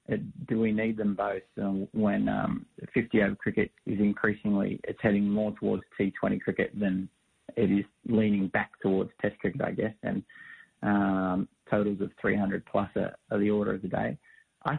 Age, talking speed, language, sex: 20-39, 165 wpm, English, male